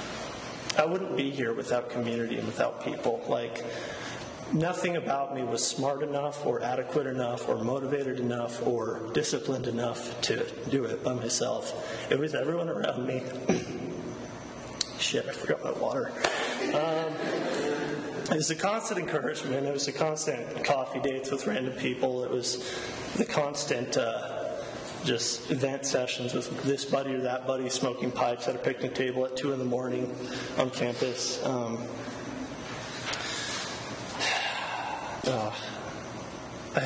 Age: 30-49